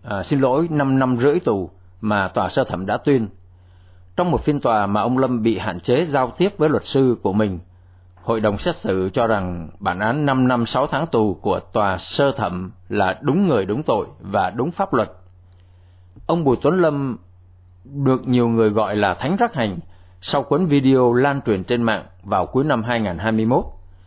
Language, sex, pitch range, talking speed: Vietnamese, male, 90-130 Hz, 195 wpm